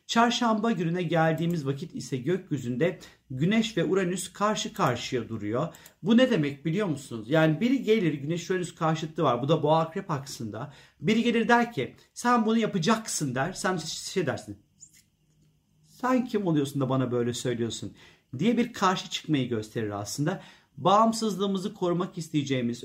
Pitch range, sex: 145-180 Hz, male